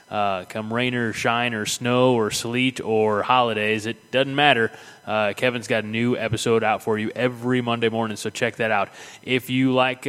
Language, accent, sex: English, American, male